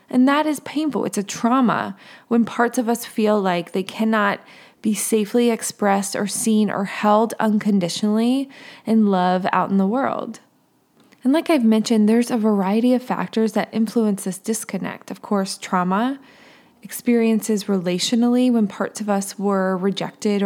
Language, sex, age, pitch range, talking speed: English, female, 20-39, 195-245 Hz, 155 wpm